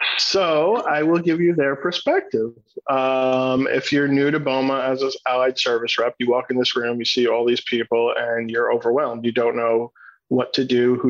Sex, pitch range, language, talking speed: male, 120-135 Hz, English, 205 wpm